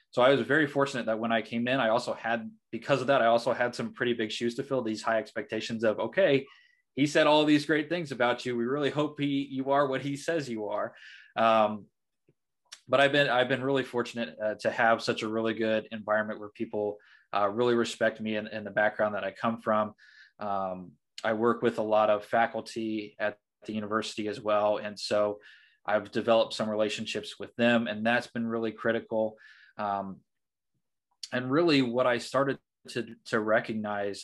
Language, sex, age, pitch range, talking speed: English, male, 20-39, 105-125 Hz, 195 wpm